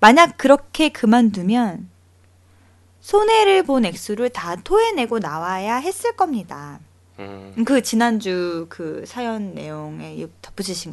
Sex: female